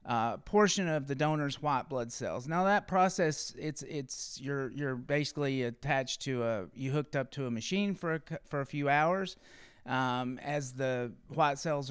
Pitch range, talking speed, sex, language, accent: 130-165 Hz, 185 wpm, male, English, American